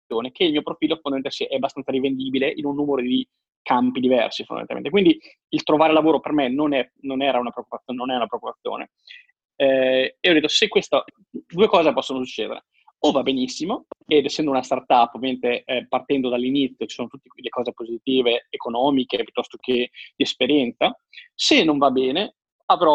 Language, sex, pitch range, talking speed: Italian, male, 130-165 Hz, 160 wpm